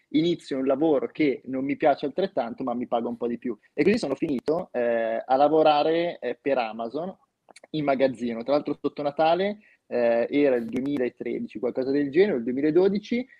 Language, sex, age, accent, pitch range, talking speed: Italian, male, 20-39, native, 125-155 Hz, 180 wpm